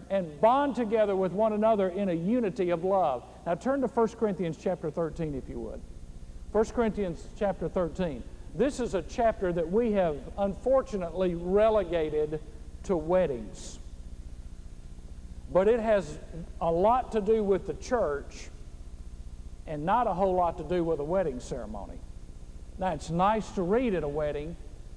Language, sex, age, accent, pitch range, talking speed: English, male, 50-69, American, 155-220 Hz, 155 wpm